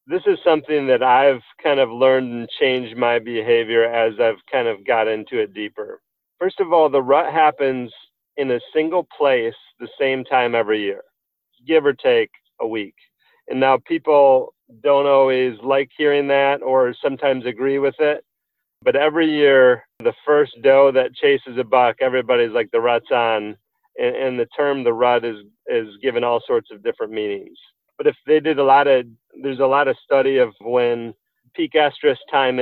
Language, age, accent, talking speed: English, 40-59, American, 180 wpm